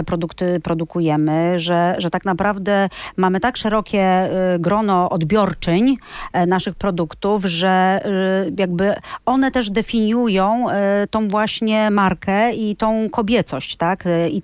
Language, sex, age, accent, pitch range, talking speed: Polish, female, 40-59, native, 180-220 Hz, 105 wpm